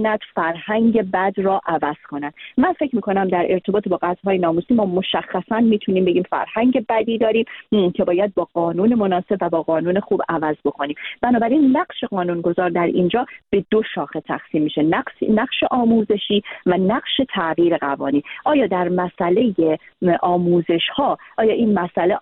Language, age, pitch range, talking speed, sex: Persian, 40-59, 165-225 Hz, 155 wpm, female